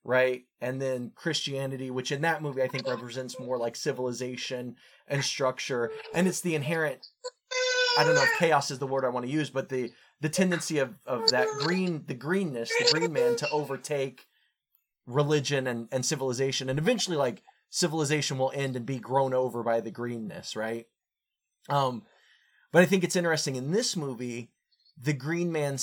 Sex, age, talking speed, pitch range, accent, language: male, 20-39, 180 wpm, 130-175 Hz, American, English